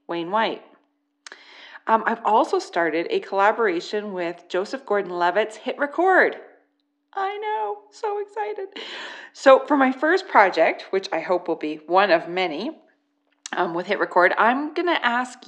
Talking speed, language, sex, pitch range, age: 145 wpm, English, female, 185-285 Hz, 30-49